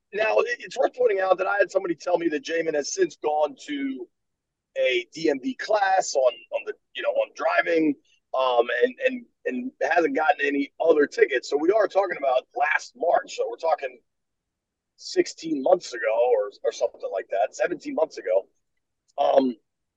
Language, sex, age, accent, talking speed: English, male, 30-49, American, 175 wpm